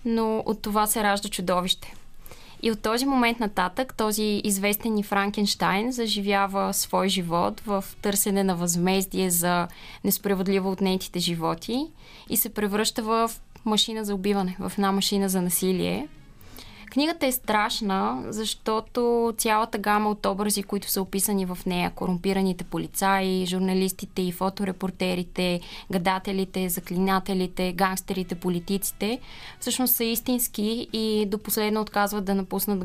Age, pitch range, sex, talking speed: 20-39, 185-215 Hz, female, 125 wpm